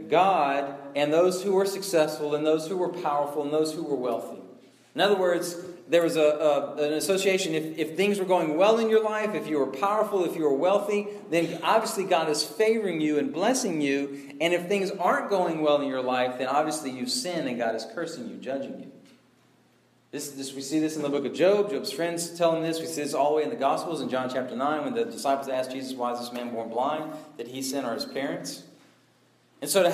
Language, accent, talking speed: English, American, 240 wpm